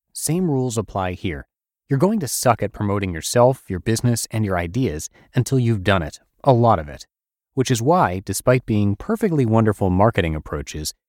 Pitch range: 90-130 Hz